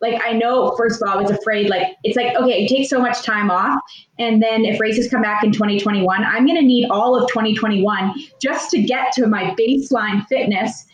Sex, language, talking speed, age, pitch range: female, English, 225 wpm, 20-39, 180-220 Hz